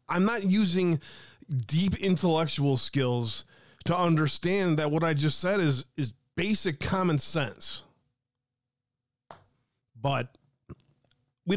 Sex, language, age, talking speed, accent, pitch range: male, English, 20-39, 105 wpm, American, 125-155 Hz